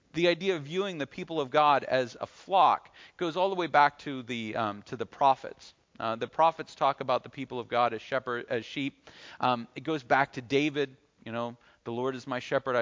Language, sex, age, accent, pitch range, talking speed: English, male, 40-59, American, 140-210 Hz, 225 wpm